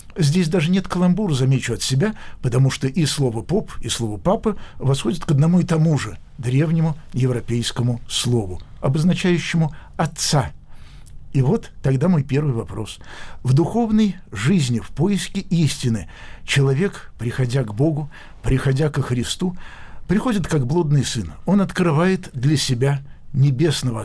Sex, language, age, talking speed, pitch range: male, Russian, 60-79, 135 wpm, 120-165 Hz